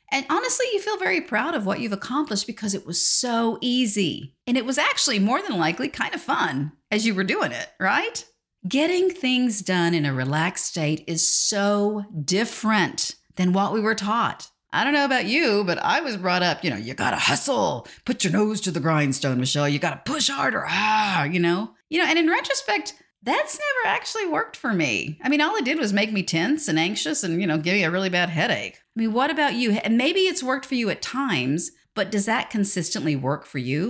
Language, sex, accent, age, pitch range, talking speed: English, female, American, 40-59, 165-270 Hz, 225 wpm